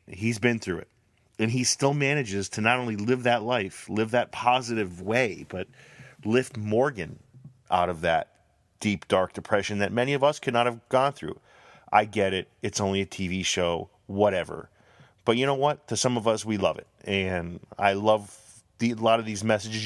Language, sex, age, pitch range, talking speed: English, male, 30-49, 100-125 Hz, 195 wpm